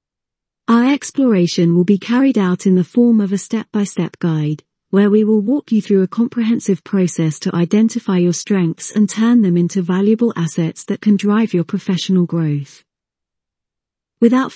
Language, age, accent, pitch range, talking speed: English, 40-59, British, 175-230 Hz, 160 wpm